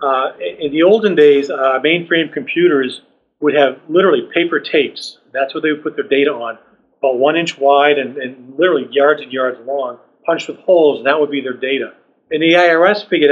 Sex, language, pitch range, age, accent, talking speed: male, English, 135-160 Hz, 40-59, American, 205 wpm